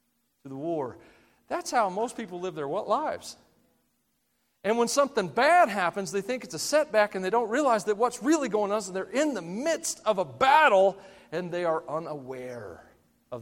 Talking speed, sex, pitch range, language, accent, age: 190 wpm, male, 185-255 Hz, English, American, 40-59